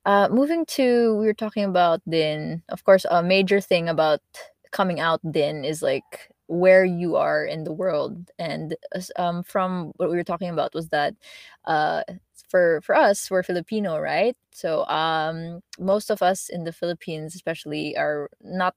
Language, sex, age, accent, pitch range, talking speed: English, female, 20-39, Filipino, 160-190 Hz, 170 wpm